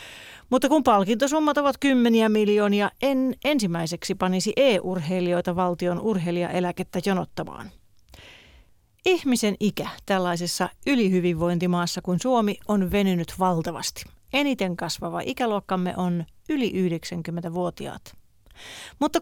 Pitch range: 180-235 Hz